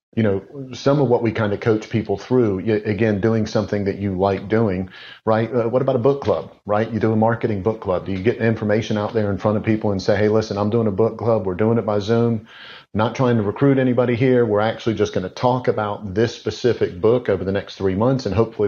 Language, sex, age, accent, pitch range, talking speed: English, male, 40-59, American, 100-115 Hz, 255 wpm